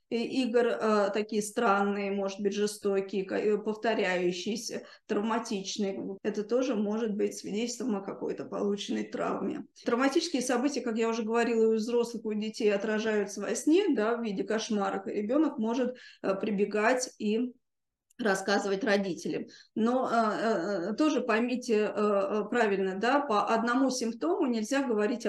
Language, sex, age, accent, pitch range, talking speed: Russian, female, 20-39, native, 210-250 Hz, 130 wpm